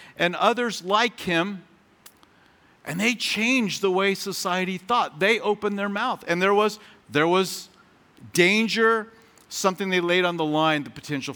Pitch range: 150-190 Hz